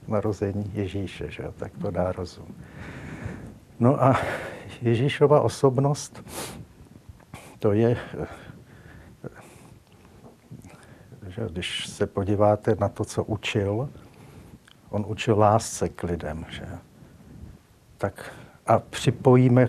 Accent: native